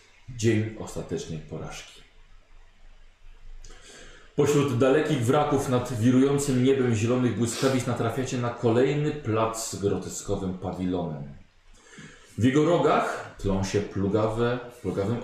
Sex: male